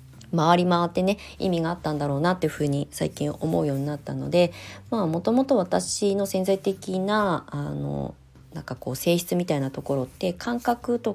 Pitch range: 145-195 Hz